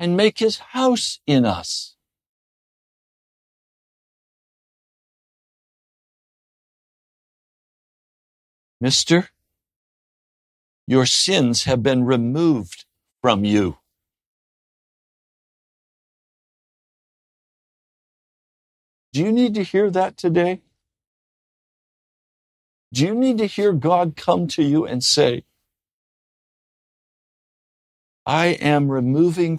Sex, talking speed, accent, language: male, 70 wpm, American, English